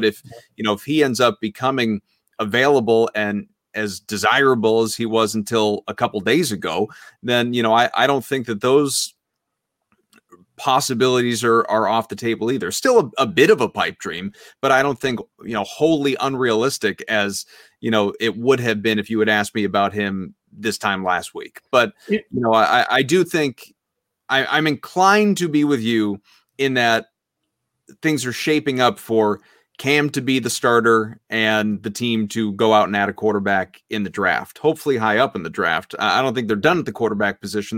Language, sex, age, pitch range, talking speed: English, male, 30-49, 105-140 Hz, 200 wpm